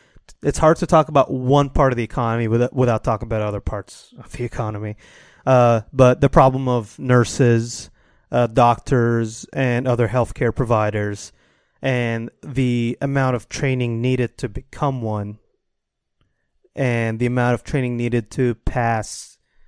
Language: English